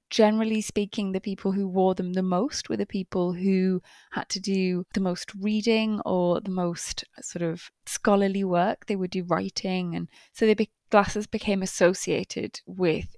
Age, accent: 20-39, British